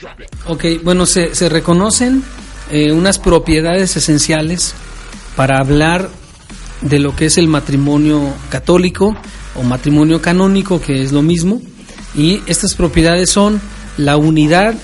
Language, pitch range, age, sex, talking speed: Spanish, 150-185 Hz, 40-59, male, 125 wpm